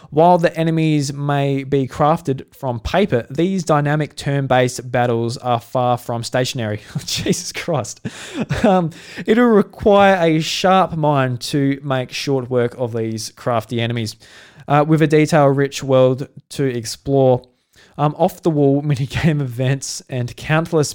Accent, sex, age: Australian, male, 20-39